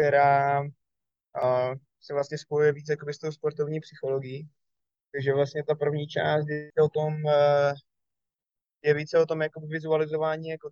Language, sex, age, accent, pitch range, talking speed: Czech, male, 20-39, native, 135-150 Hz, 145 wpm